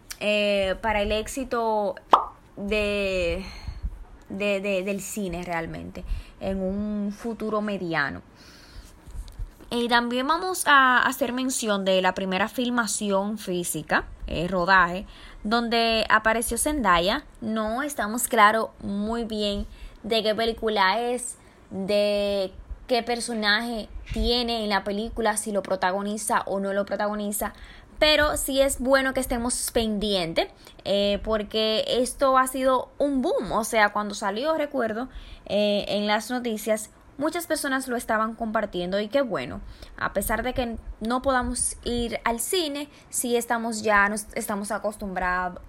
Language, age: Spanish, 20-39